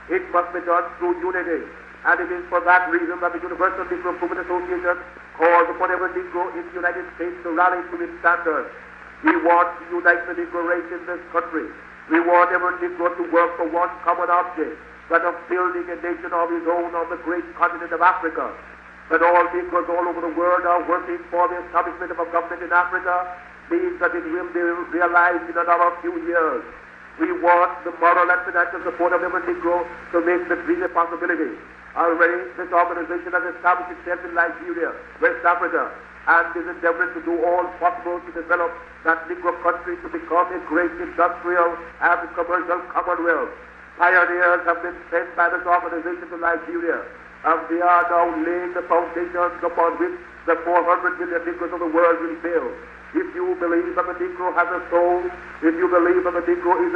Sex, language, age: male, English, 60-79